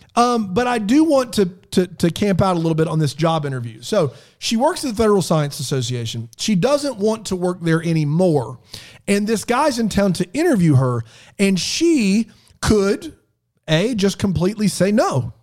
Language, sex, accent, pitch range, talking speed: English, male, American, 150-220 Hz, 185 wpm